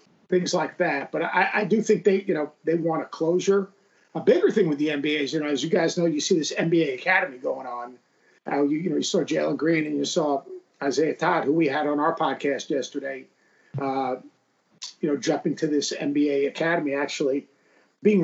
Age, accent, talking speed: 50-69, American, 215 wpm